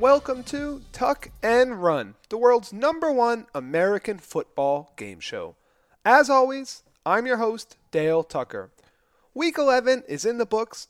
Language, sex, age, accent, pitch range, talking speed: English, male, 30-49, American, 150-240 Hz, 145 wpm